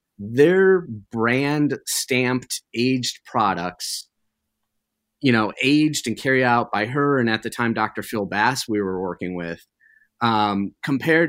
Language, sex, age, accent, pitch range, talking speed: English, male, 30-49, American, 115-155 Hz, 140 wpm